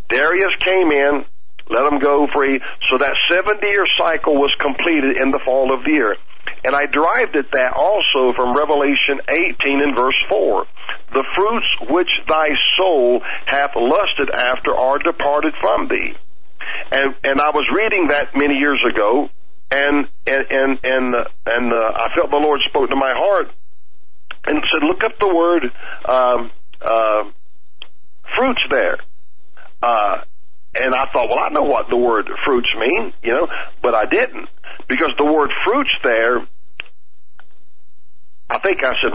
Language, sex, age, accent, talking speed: English, male, 50-69, American, 160 wpm